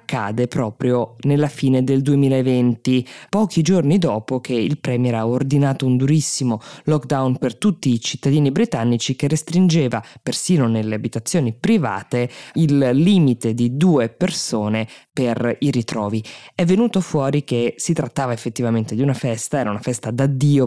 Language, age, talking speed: Italian, 20-39, 145 wpm